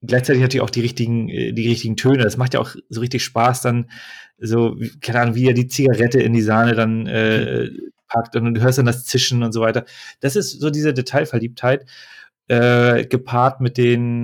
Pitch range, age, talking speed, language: 115-130 Hz, 30-49, 200 wpm, German